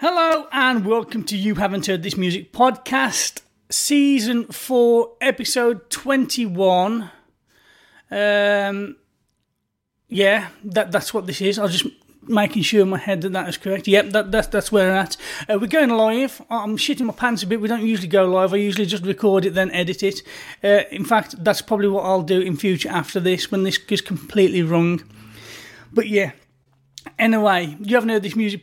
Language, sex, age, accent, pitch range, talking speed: English, male, 30-49, British, 195-230 Hz, 185 wpm